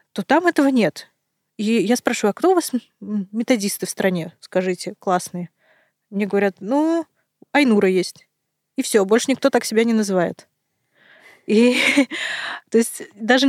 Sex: female